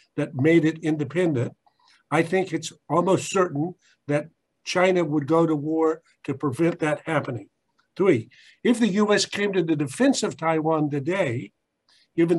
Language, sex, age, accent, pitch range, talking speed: English, male, 50-69, American, 145-175 Hz, 150 wpm